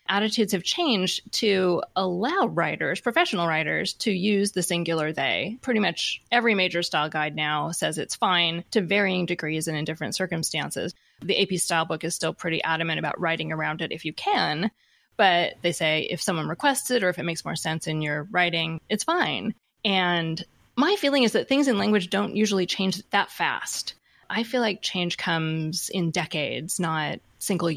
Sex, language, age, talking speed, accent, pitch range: female, English, 20-39, 180 wpm, American, 175-220 Hz